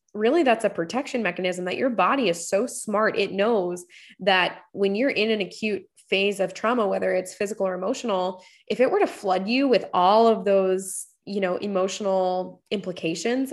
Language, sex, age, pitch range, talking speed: English, female, 20-39, 180-220 Hz, 180 wpm